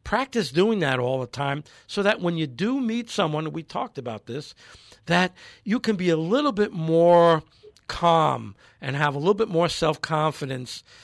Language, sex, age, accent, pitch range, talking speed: English, male, 60-79, American, 140-180 Hz, 180 wpm